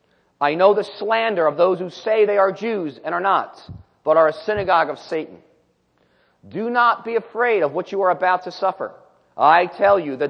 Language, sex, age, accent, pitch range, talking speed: English, male, 40-59, American, 155-210 Hz, 205 wpm